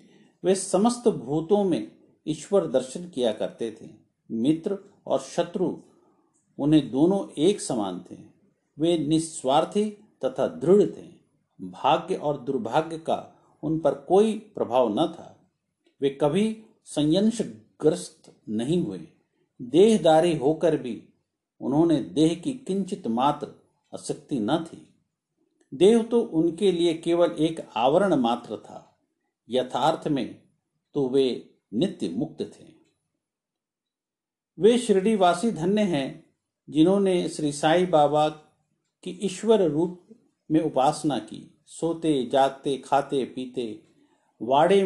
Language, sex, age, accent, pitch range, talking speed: Hindi, male, 50-69, native, 150-205 Hz, 110 wpm